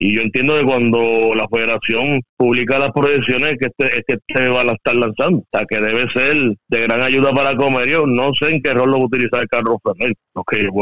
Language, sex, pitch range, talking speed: Spanish, male, 120-140 Hz, 250 wpm